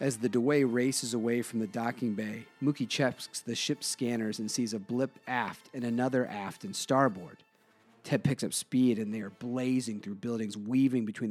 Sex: male